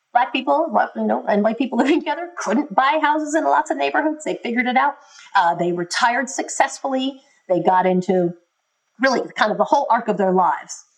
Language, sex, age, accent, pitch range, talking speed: English, female, 40-59, American, 190-275 Hz, 195 wpm